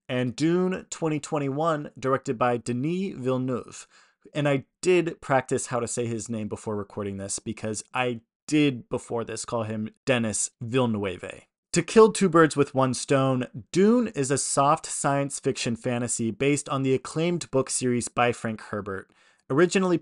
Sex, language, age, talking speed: male, English, 20-39, 155 wpm